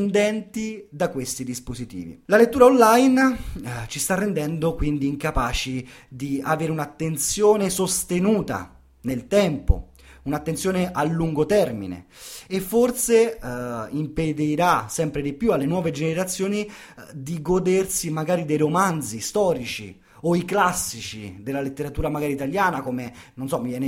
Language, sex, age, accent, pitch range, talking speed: Italian, male, 30-49, native, 135-195 Hz, 130 wpm